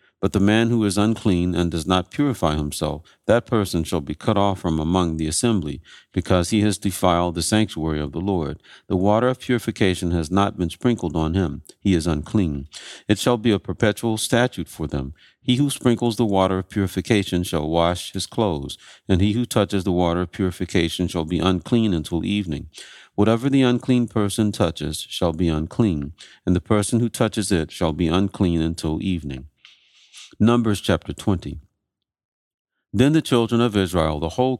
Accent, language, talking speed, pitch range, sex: American, English, 180 wpm, 85-110 Hz, male